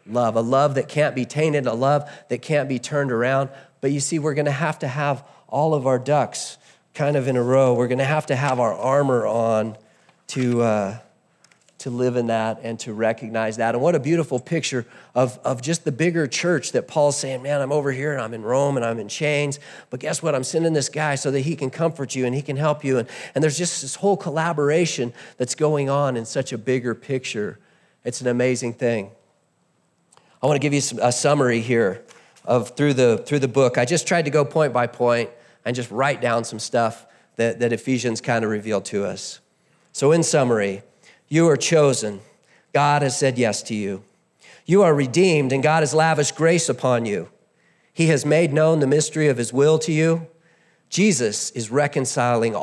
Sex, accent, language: male, American, English